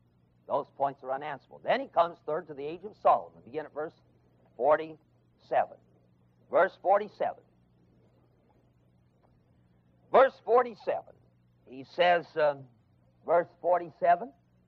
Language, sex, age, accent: English, male, 50-69, American